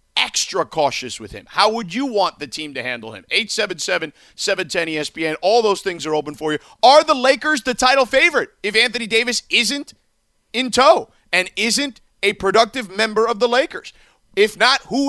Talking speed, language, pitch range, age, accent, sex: 175 wpm, English, 155-230 Hz, 40-59, American, male